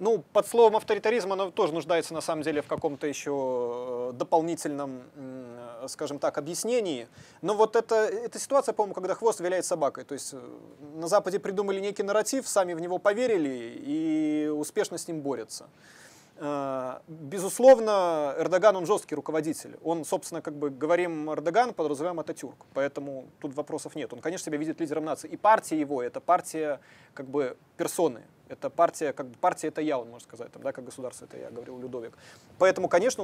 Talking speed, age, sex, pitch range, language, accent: 170 wpm, 20-39, male, 150-200 Hz, Russian, native